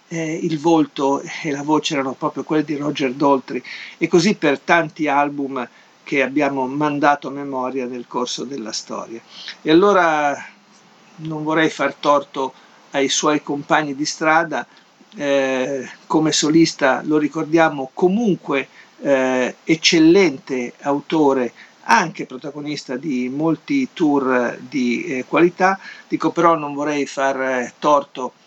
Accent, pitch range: native, 140-160 Hz